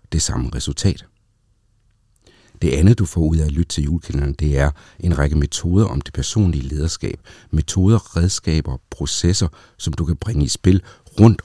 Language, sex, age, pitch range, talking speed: Danish, male, 60-79, 70-90 Hz, 170 wpm